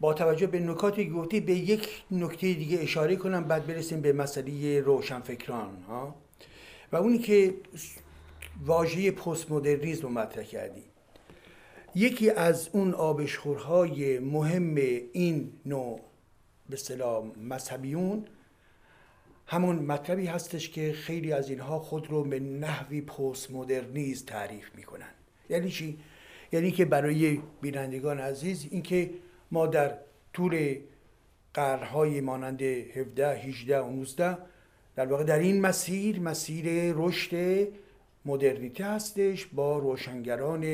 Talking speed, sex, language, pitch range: 110 wpm, male, Persian, 135-180 Hz